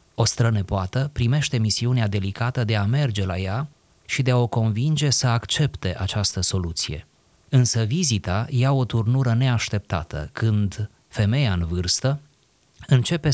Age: 30-49